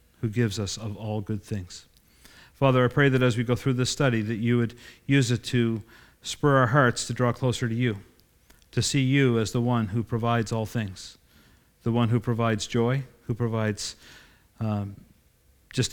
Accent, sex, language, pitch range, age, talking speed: American, male, English, 105-125 Hz, 50-69, 190 wpm